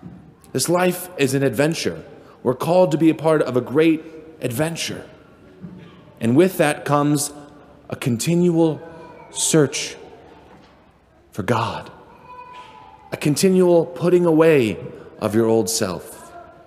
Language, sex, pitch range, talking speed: English, male, 105-160 Hz, 115 wpm